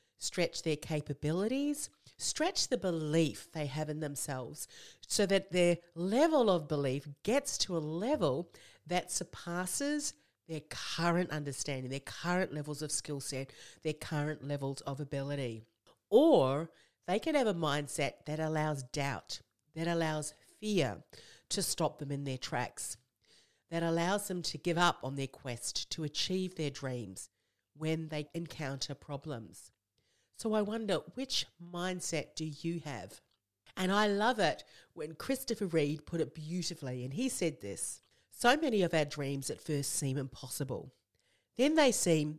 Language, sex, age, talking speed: English, female, 40-59, 150 wpm